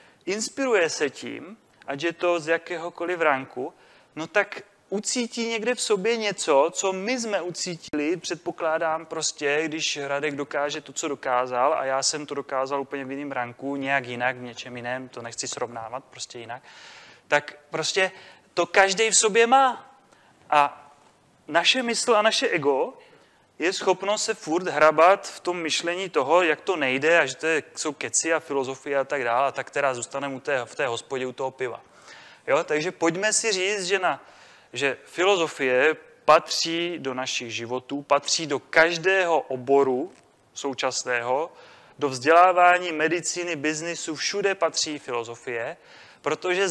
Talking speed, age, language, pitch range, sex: 155 wpm, 30-49, Czech, 140-185 Hz, male